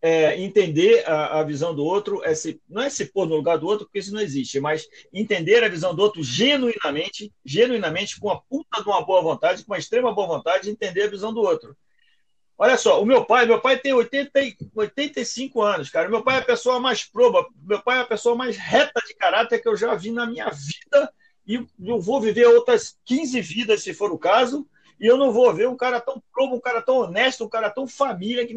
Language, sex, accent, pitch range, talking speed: Portuguese, male, Brazilian, 205-295 Hz, 230 wpm